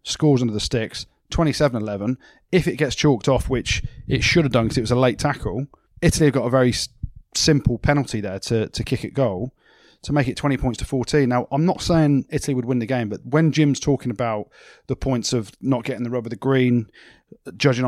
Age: 30-49